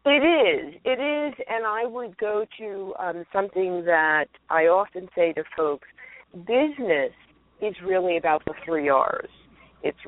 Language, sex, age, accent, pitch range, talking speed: English, female, 50-69, American, 155-210 Hz, 150 wpm